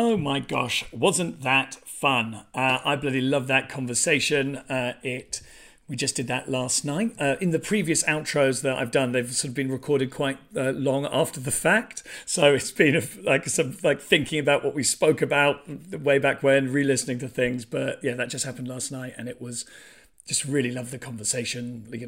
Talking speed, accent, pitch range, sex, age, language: 200 wpm, British, 120-145 Hz, male, 40-59, English